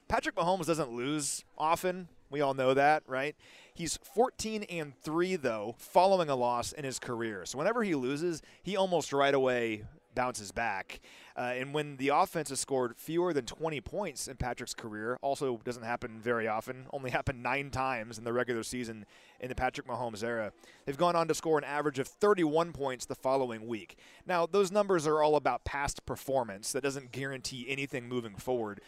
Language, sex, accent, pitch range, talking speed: English, male, American, 125-160 Hz, 185 wpm